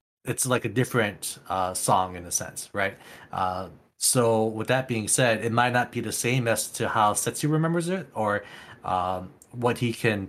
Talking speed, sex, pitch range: 190 wpm, male, 100-130 Hz